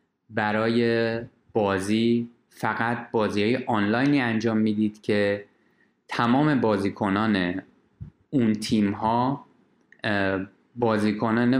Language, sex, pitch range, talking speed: Persian, male, 100-115 Hz, 70 wpm